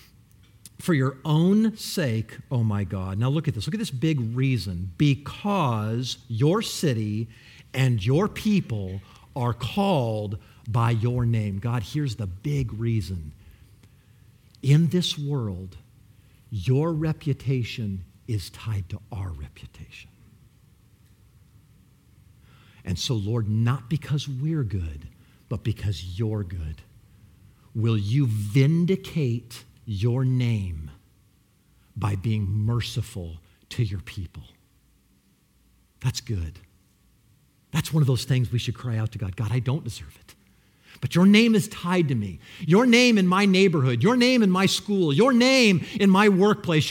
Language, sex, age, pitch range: English, male, 50-69, 105-170 Hz